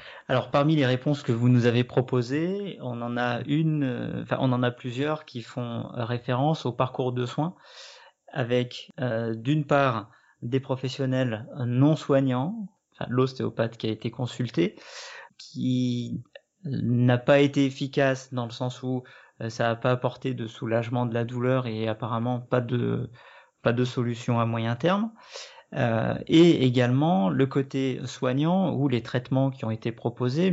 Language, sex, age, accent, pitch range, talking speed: French, male, 30-49, French, 120-140 Hz, 145 wpm